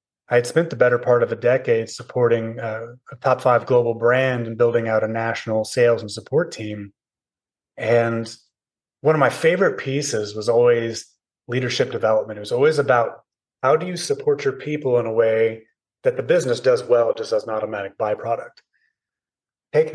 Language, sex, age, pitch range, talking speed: English, male, 30-49, 115-145 Hz, 180 wpm